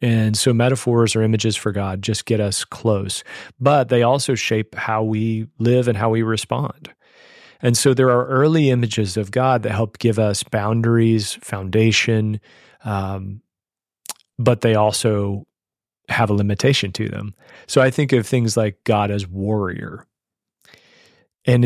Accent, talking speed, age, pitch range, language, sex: American, 150 wpm, 40-59, 105-120 Hz, English, male